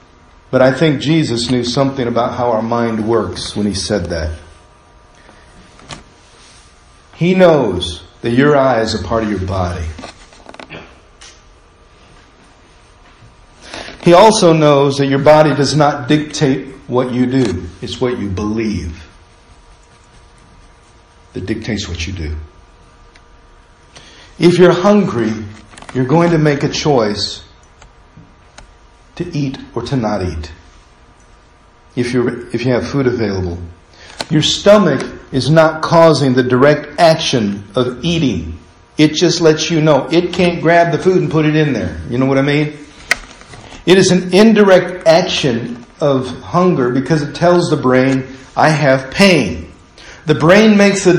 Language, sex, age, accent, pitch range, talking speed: English, male, 50-69, American, 105-160 Hz, 135 wpm